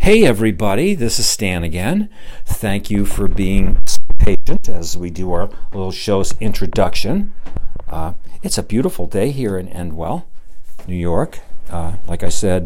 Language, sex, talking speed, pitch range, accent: English, male, 155 wpm, 90-110 Hz, American